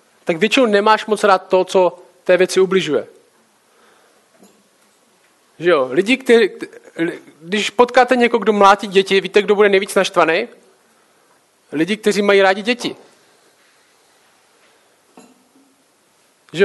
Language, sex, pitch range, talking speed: Czech, male, 190-230 Hz, 110 wpm